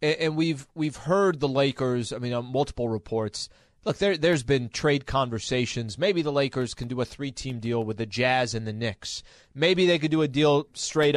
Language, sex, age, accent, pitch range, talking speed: English, male, 30-49, American, 115-150 Hz, 205 wpm